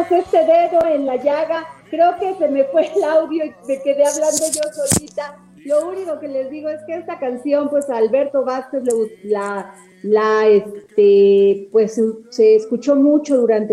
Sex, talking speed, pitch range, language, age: female, 170 wpm, 210-255 Hz, Spanish, 40-59